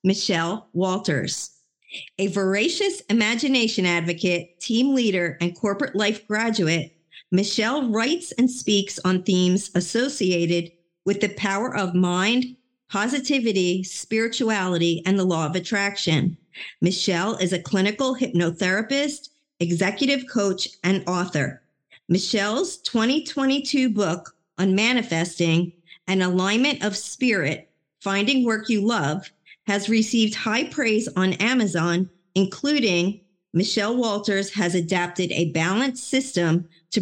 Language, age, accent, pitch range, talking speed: English, 50-69, American, 180-230 Hz, 110 wpm